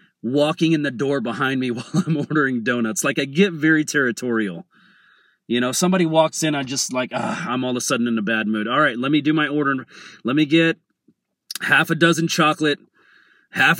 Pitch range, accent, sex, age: 140-175 Hz, American, male, 30-49